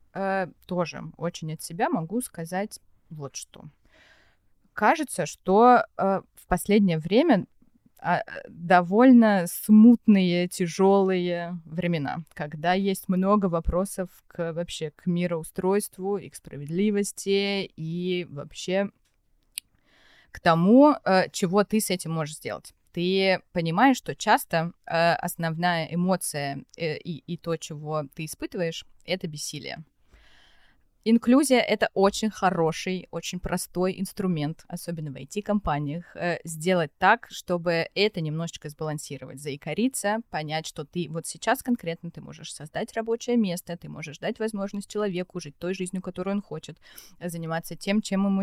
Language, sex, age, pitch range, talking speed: Russian, female, 20-39, 165-200 Hz, 120 wpm